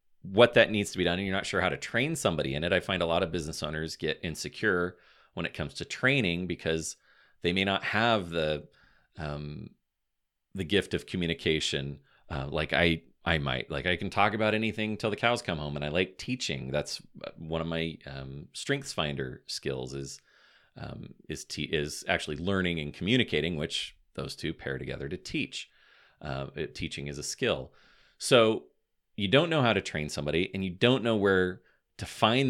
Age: 30-49